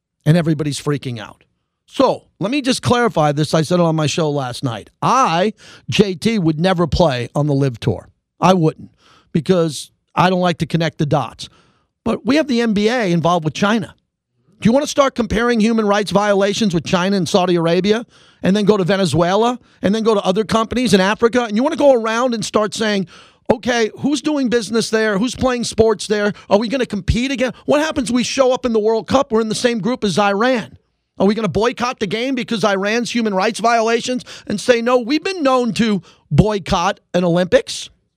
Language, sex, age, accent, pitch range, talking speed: English, male, 40-59, American, 175-240 Hz, 210 wpm